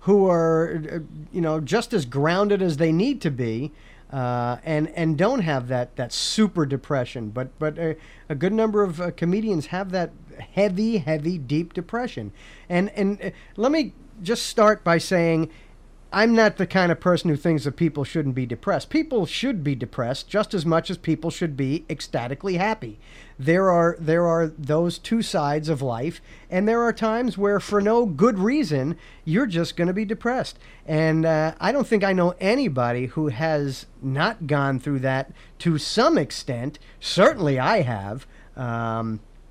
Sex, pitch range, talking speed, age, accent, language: male, 145-195 Hz, 175 wpm, 40-59, American, English